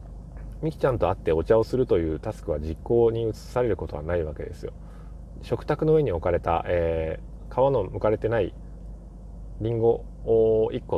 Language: Japanese